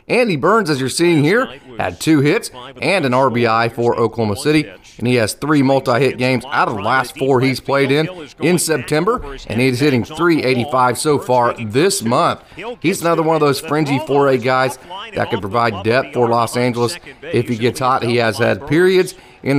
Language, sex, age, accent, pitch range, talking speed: English, male, 30-49, American, 120-150 Hz, 195 wpm